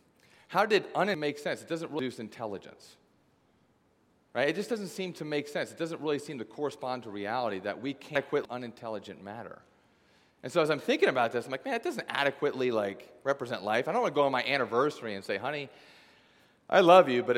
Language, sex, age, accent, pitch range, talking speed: English, male, 40-59, American, 105-155 Hz, 215 wpm